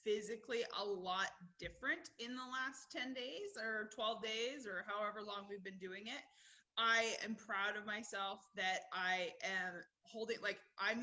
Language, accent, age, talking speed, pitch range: English, American, 20-39, 165 wpm, 195-230 Hz